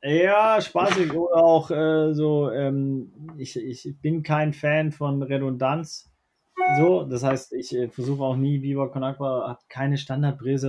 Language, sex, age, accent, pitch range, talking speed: German, male, 20-39, German, 125-150 Hz, 155 wpm